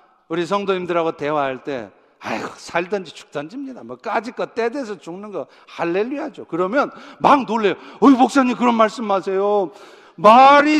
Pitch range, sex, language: 175-275 Hz, male, Korean